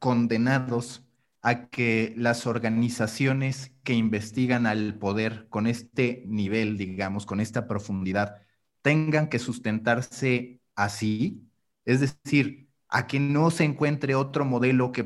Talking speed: 120 wpm